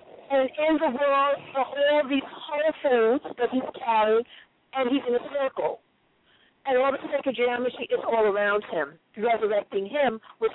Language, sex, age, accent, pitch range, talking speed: English, female, 50-69, American, 245-305 Hz, 170 wpm